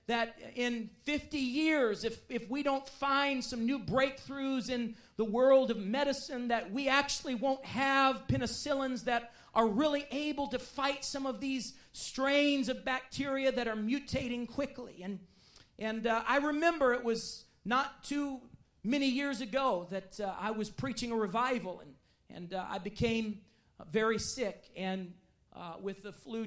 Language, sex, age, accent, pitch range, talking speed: English, male, 40-59, American, 205-265 Hz, 160 wpm